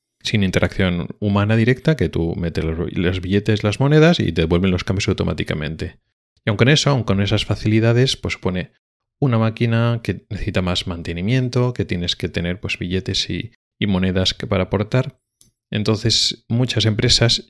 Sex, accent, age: male, Spanish, 30-49